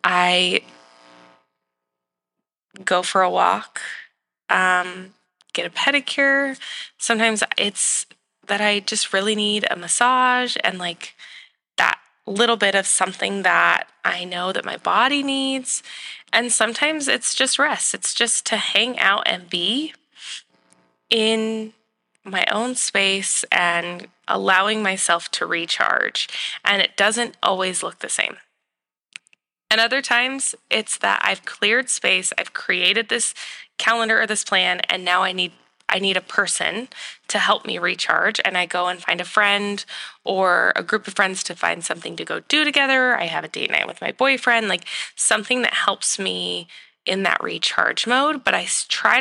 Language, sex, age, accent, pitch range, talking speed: English, female, 20-39, American, 180-240 Hz, 155 wpm